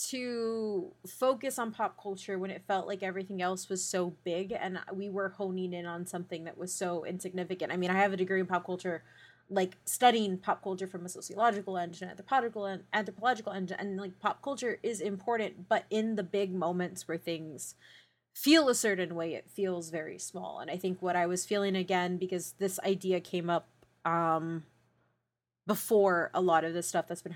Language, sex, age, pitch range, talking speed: English, female, 30-49, 175-205 Hz, 195 wpm